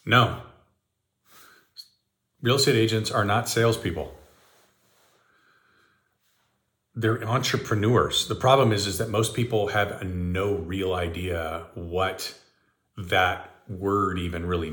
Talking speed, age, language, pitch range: 100 wpm, 40-59, English, 95-135 Hz